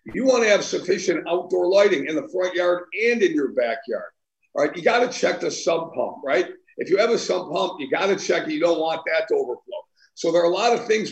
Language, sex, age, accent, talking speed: English, male, 50-69, American, 265 wpm